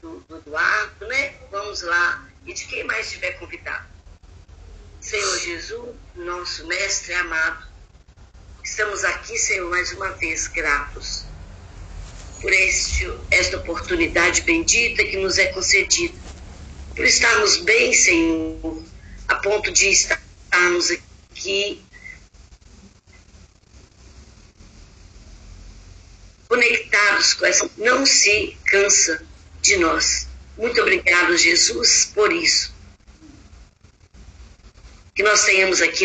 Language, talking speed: Portuguese, 95 wpm